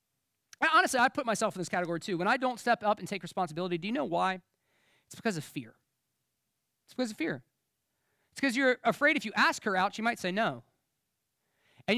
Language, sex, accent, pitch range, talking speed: English, male, American, 185-270 Hz, 210 wpm